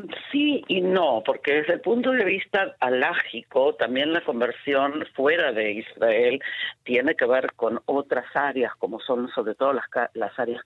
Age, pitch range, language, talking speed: 40-59, 120-160 Hz, Spanish, 165 wpm